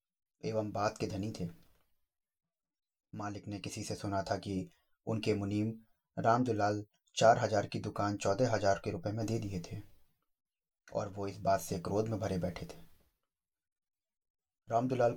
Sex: male